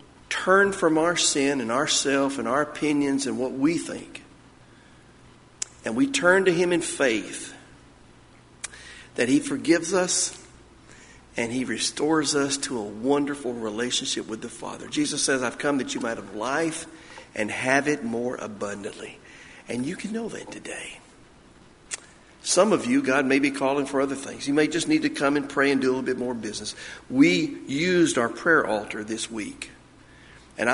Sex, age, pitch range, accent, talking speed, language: male, 50-69, 130-180 Hz, American, 170 wpm, English